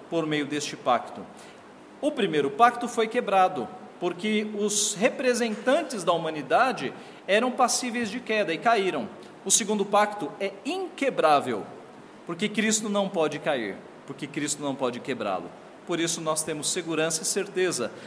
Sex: male